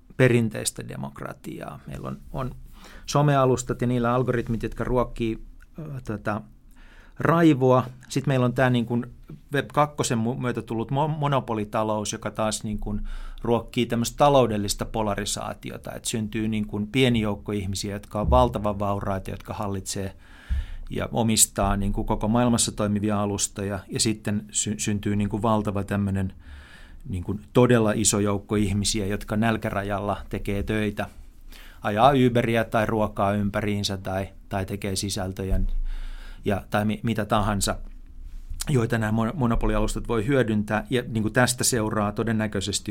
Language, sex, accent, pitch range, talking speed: Finnish, male, native, 100-120 Hz, 125 wpm